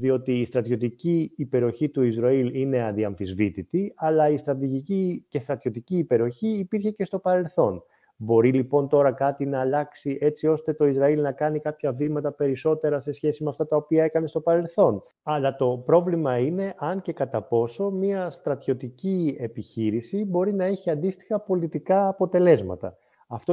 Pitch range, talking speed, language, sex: 115-175 Hz, 155 wpm, Greek, male